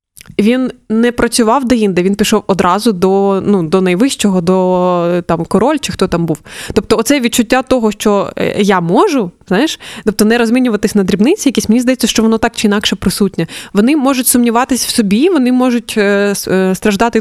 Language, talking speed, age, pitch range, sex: Ukrainian, 170 wpm, 20-39, 195-235 Hz, female